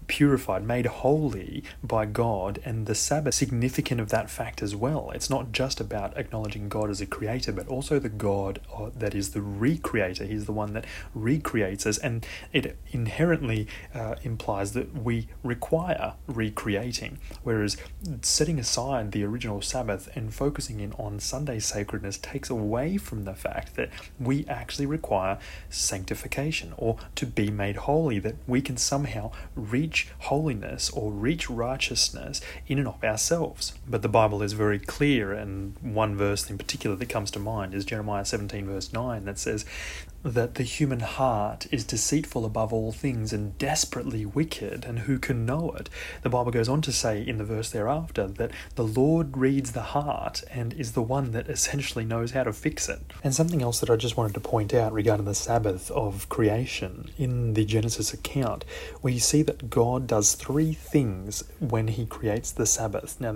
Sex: male